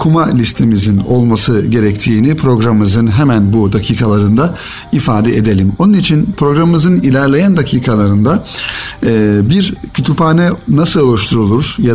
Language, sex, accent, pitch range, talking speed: Turkish, male, native, 110-155 Hz, 100 wpm